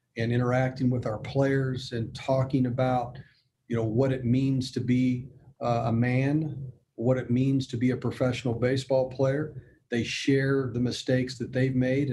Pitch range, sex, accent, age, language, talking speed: 125-140 Hz, male, American, 50-69, English, 170 wpm